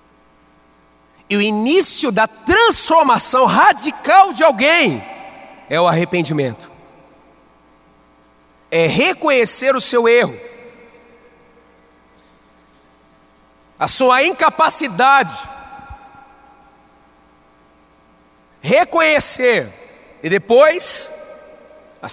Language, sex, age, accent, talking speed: Portuguese, male, 40-59, Brazilian, 60 wpm